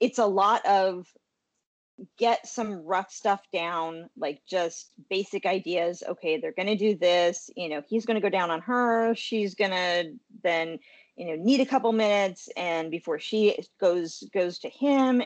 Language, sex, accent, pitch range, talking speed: English, female, American, 175-230 Hz, 175 wpm